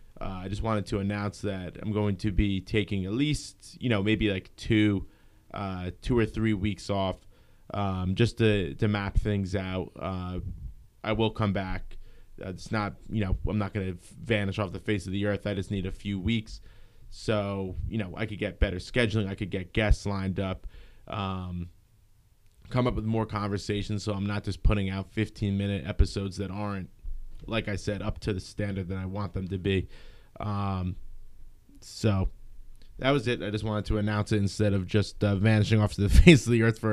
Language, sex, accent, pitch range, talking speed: English, male, American, 95-110 Hz, 205 wpm